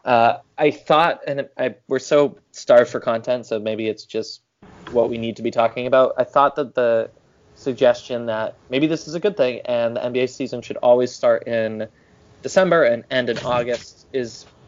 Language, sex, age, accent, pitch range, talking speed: English, male, 20-39, American, 110-130 Hz, 190 wpm